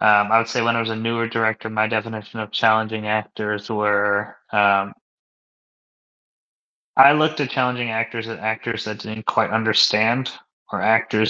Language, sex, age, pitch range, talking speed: English, male, 20-39, 110-125 Hz, 160 wpm